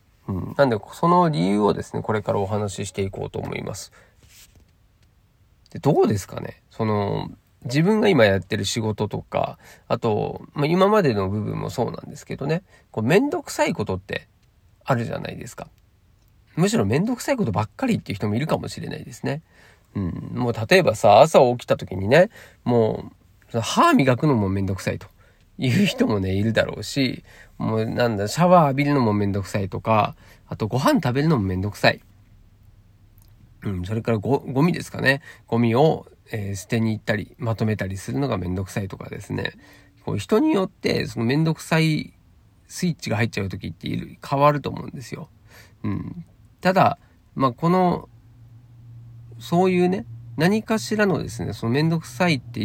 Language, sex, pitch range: Japanese, male, 100-140 Hz